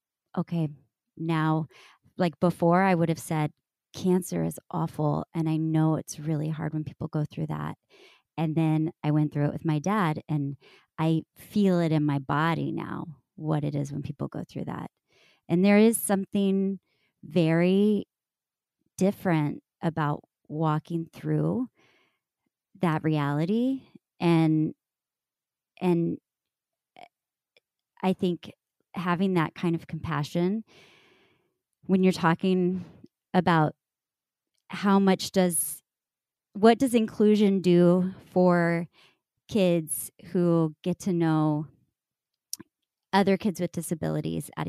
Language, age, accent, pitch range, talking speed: English, 30-49, American, 155-185 Hz, 120 wpm